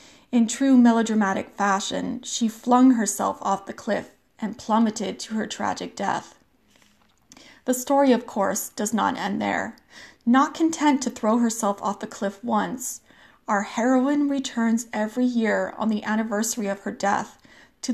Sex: female